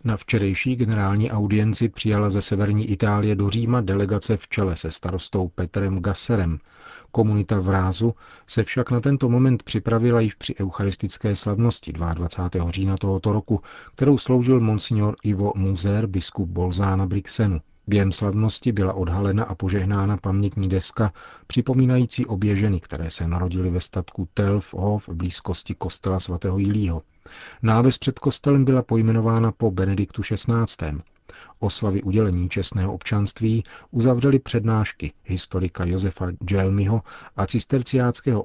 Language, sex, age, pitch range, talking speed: Czech, male, 40-59, 95-115 Hz, 130 wpm